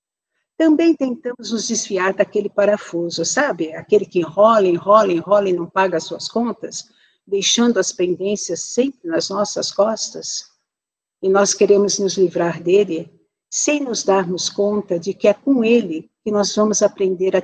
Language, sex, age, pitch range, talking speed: Portuguese, female, 60-79, 185-245 Hz, 155 wpm